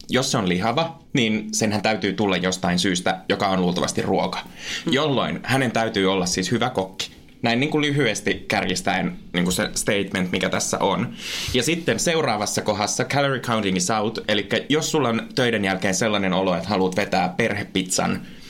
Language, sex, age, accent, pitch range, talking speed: Finnish, male, 20-39, native, 100-140 Hz, 160 wpm